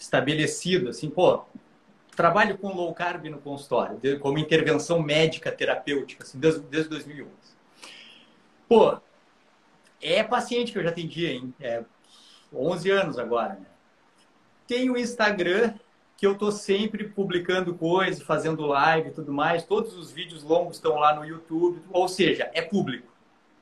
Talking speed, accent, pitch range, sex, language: 140 wpm, Brazilian, 165-215 Hz, male, Portuguese